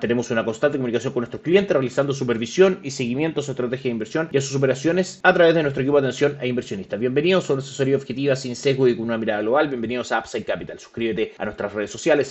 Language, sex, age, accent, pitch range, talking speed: Spanish, male, 30-49, Mexican, 125-155 Hz, 245 wpm